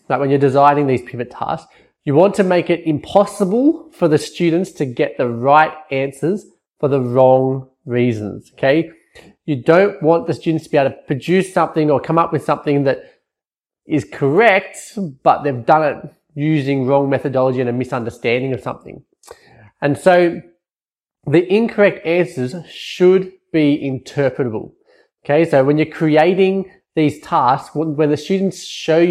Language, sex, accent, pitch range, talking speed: English, male, Australian, 130-170 Hz, 155 wpm